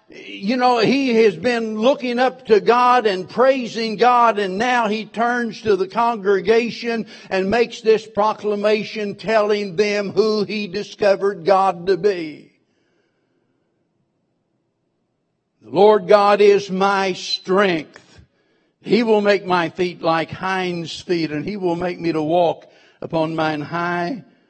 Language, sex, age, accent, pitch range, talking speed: English, male, 60-79, American, 160-220 Hz, 135 wpm